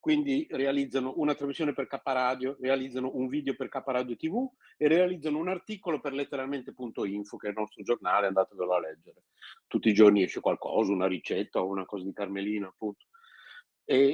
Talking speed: 180 wpm